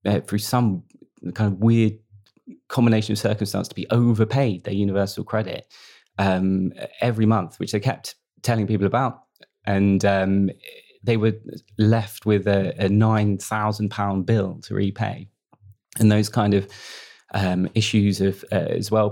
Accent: British